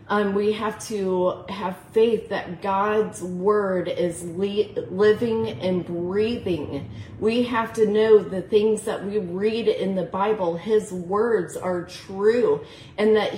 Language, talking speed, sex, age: English, 145 wpm, female, 30-49